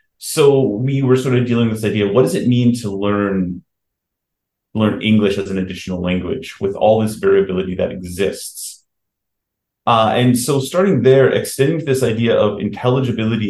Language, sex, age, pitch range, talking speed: English, male, 30-49, 100-125 Hz, 175 wpm